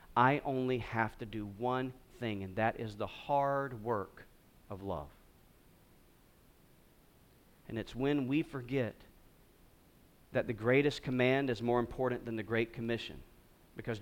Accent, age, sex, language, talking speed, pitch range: American, 40-59, male, English, 135 wpm, 105-140 Hz